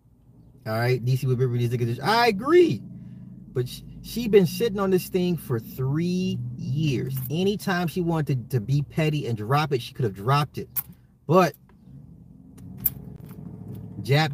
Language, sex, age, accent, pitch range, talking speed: English, male, 30-49, American, 115-145 Hz, 160 wpm